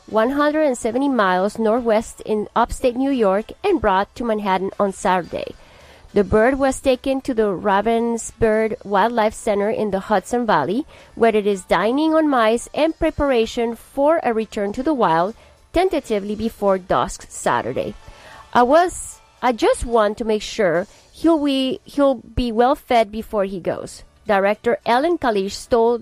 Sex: female